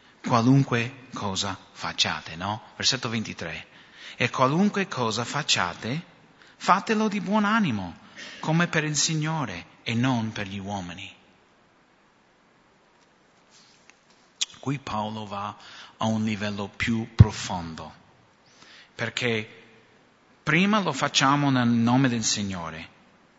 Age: 30-49